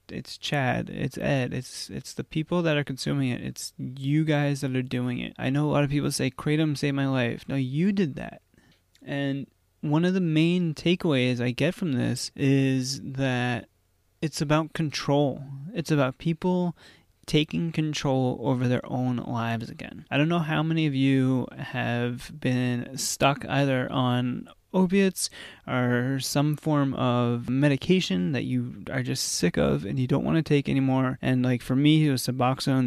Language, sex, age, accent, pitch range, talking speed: English, male, 20-39, American, 130-150 Hz, 175 wpm